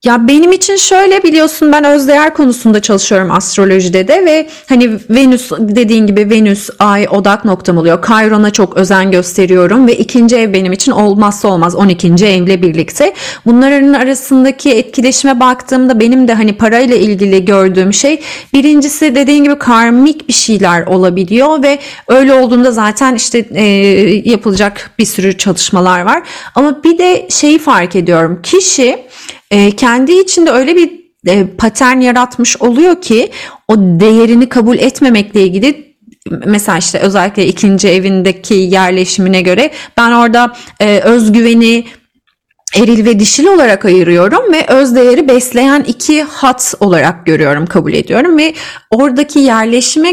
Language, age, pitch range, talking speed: Turkish, 30-49, 200-280 Hz, 140 wpm